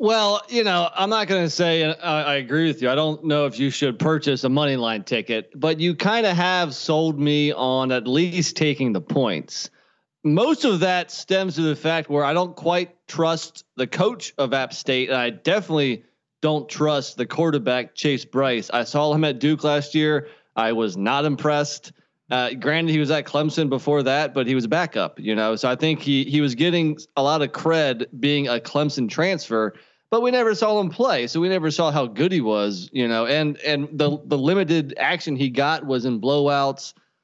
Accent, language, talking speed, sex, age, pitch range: American, English, 210 wpm, male, 30-49, 125-160 Hz